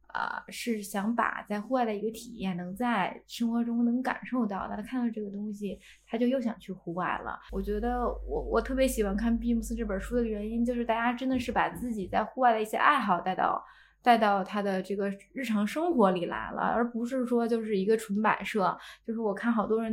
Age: 20-39